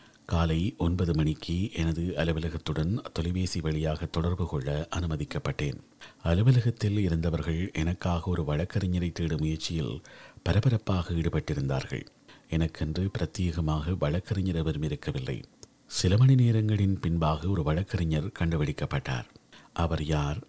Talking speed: 95 wpm